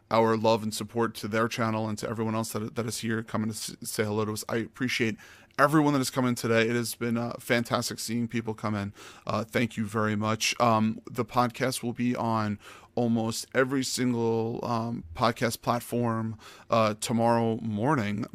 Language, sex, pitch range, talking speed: English, male, 110-120 Hz, 190 wpm